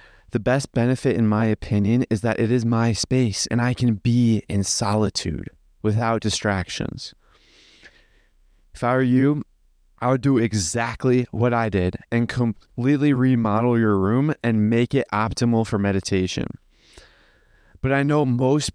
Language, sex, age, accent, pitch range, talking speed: English, male, 20-39, American, 105-125 Hz, 145 wpm